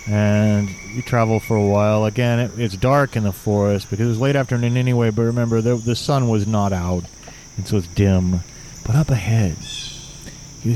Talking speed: 190 wpm